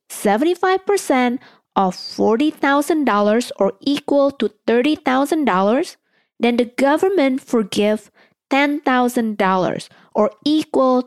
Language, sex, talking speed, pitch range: English, female, 75 wpm, 195-280 Hz